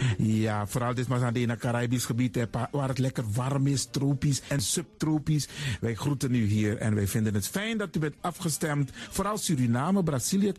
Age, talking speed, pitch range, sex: 50-69, 200 wpm, 125-180 Hz, male